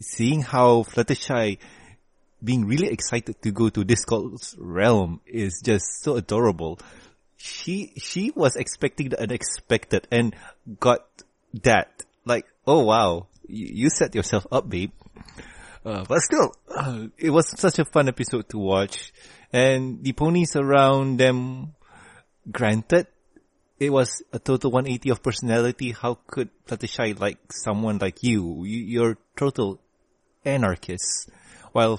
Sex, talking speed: male, 130 wpm